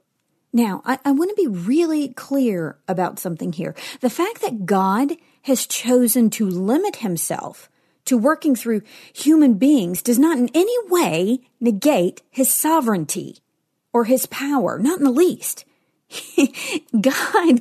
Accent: American